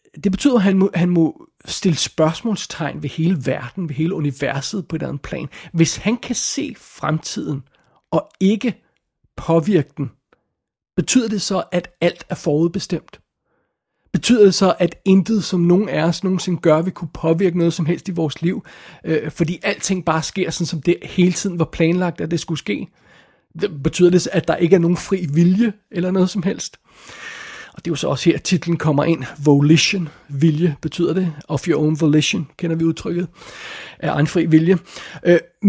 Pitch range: 160-185 Hz